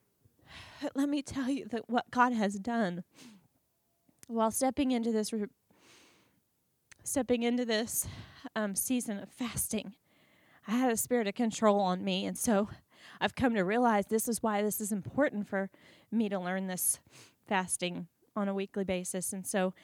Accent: American